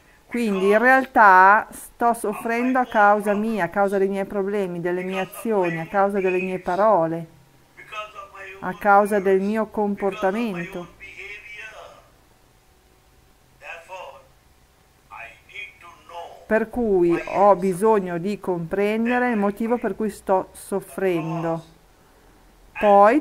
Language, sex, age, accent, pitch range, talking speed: Italian, female, 40-59, native, 180-220 Hz, 100 wpm